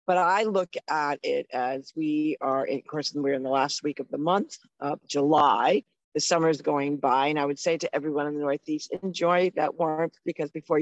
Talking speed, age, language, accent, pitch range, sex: 215 wpm, 50-69, English, American, 145-175 Hz, female